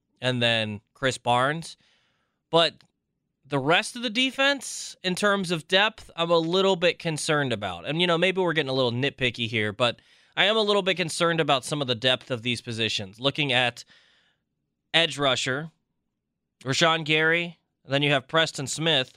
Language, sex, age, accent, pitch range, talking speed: English, male, 20-39, American, 130-180 Hz, 175 wpm